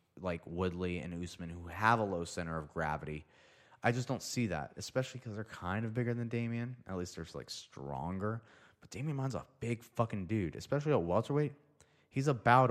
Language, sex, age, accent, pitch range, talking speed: English, male, 30-49, American, 90-115 Hz, 195 wpm